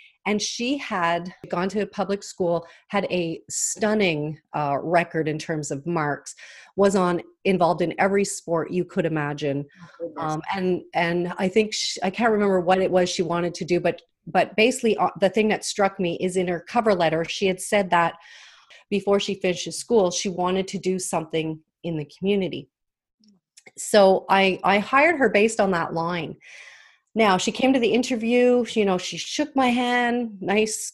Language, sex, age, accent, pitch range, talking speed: English, female, 30-49, American, 170-215 Hz, 180 wpm